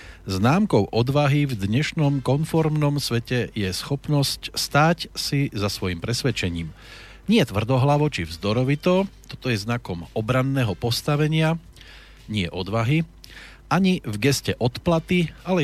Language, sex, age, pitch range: Slovak, male, 40-59, 95-130 Hz